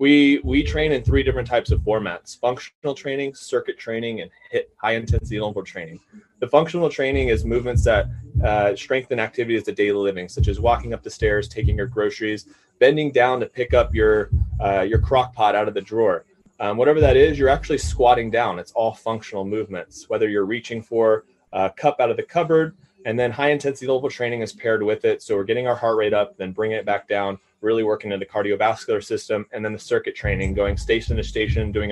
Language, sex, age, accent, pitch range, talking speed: English, male, 20-39, American, 100-130 Hz, 210 wpm